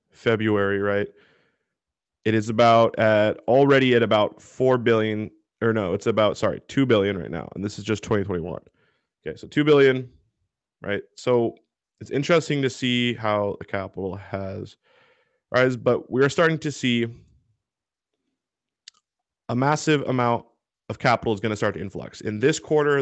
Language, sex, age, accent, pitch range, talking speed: English, male, 20-39, American, 105-120 Hz, 155 wpm